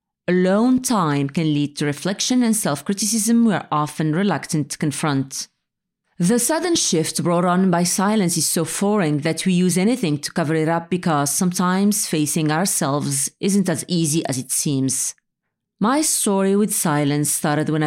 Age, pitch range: 30-49, 150-200 Hz